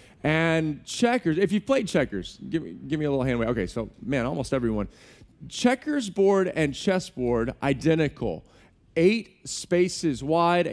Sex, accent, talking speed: male, American, 150 wpm